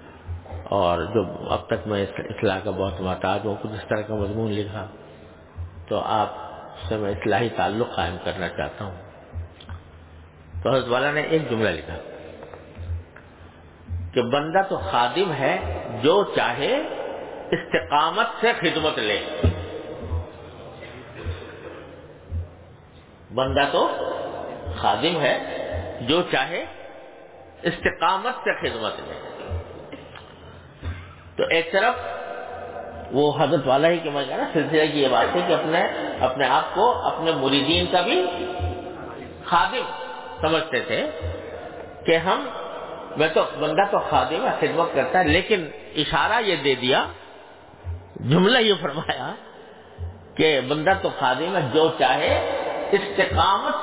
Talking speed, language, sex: 120 wpm, English, male